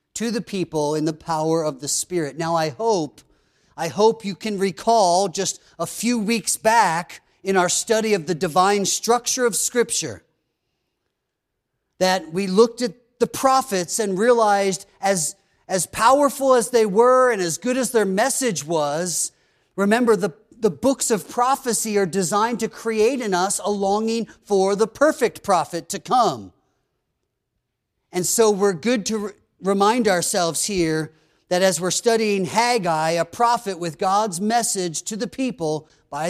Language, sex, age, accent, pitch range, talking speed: English, male, 40-59, American, 160-220 Hz, 155 wpm